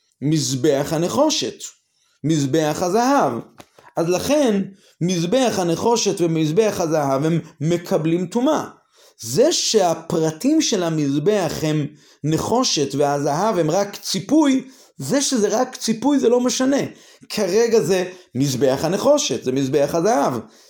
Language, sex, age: Hebrew, male, 30-49